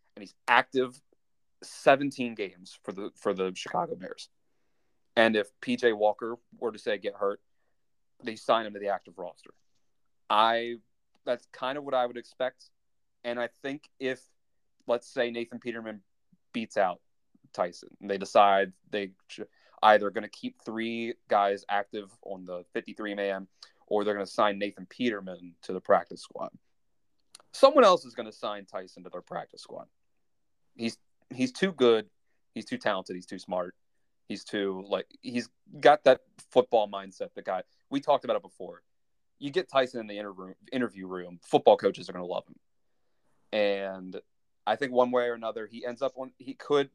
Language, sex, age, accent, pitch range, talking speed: English, male, 30-49, American, 100-130 Hz, 175 wpm